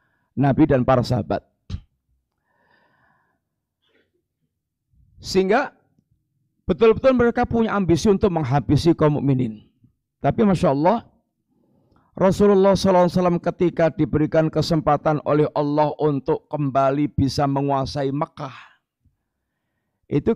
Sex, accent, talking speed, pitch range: male, native, 85 wpm, 125-155 Hz